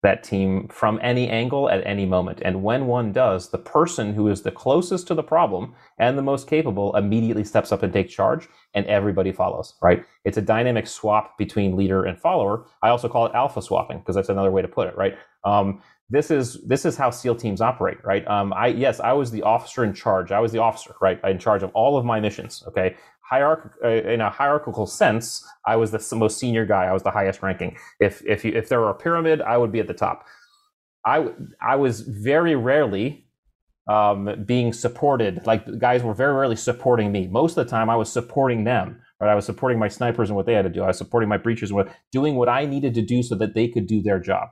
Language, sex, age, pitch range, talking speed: English, male, 30-49, 105-125 Hz, 235 wpm